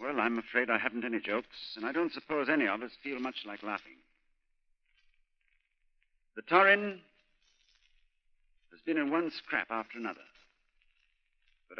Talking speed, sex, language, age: 140 wpm, male, English, 60-79